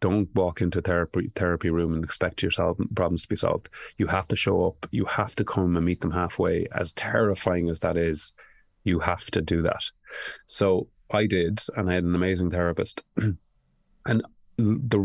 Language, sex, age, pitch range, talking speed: English, male, 30-49, 85-100 Hz, 190 wpm